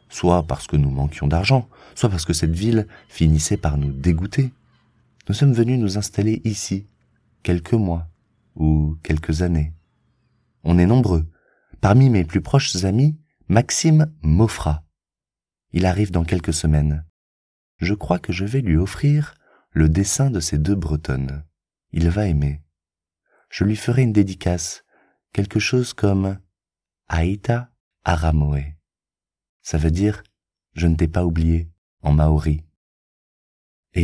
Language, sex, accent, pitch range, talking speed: French, male, French, 80-105 Hz, 140 wpm